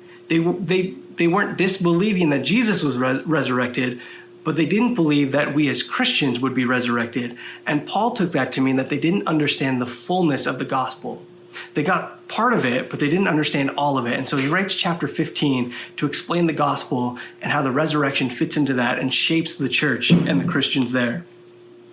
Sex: male